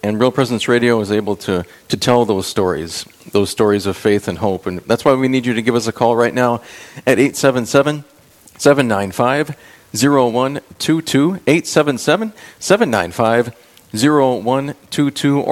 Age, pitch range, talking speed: 40-59, 115-140 Hz, 130 wpm